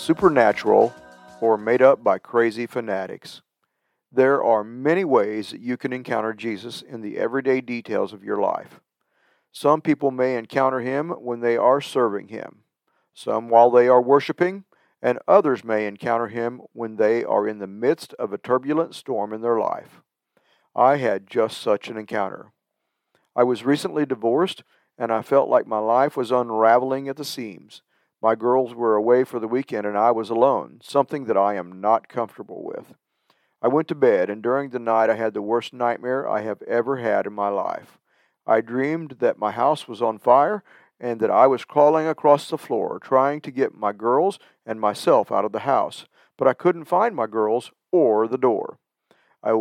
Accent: American